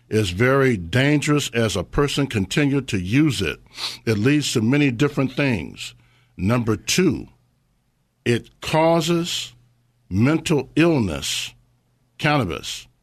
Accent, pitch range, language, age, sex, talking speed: American, 115-145 Hz, English, 60-79, male, 105 wpm